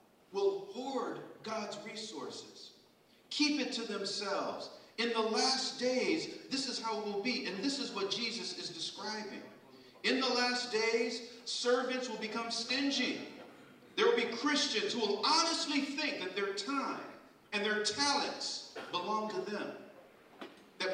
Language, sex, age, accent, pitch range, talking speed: English, male, 50-69, American, 225-300 Hz, 145 wpm